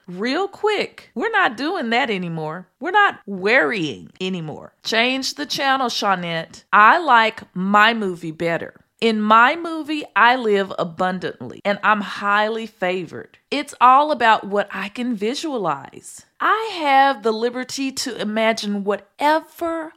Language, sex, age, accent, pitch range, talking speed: English, female, 40-59, American, 205-275 Hz, 130 wpm